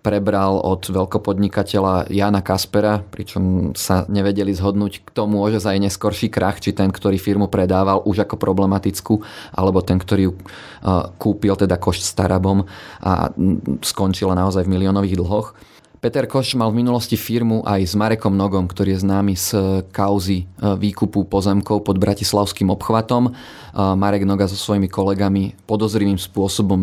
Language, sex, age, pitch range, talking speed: Slovak, male, 30-49, 95-105 Hz, 145 wpm